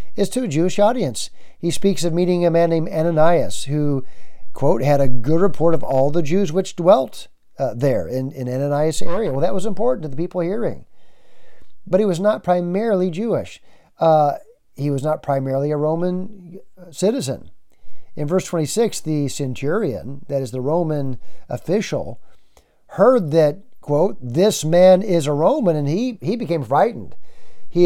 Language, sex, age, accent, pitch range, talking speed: English, male, 50-69, American, 150-190 Hz, 165 wpm